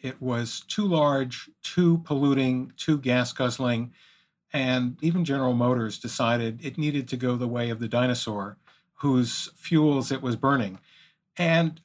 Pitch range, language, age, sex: 120-145 Hz, English, 50-69, male